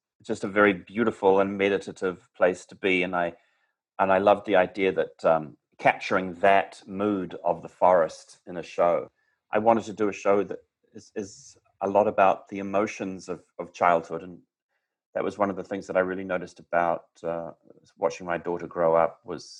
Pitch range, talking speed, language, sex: 85-100 Hz, 195 wpm, English, male